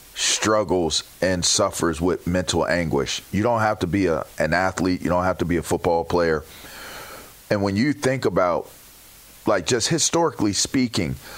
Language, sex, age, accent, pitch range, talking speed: English, male, 40-59, American, 90-120 Hz, 165 wpm